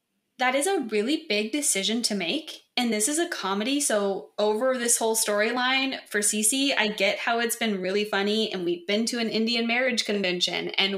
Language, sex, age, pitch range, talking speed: English, female, 20-39, 195-235 Hz, 195 wpm